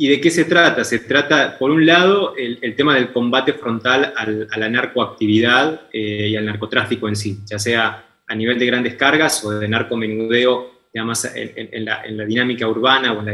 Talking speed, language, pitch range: 195 wpm, Spanish, 110-140 Hz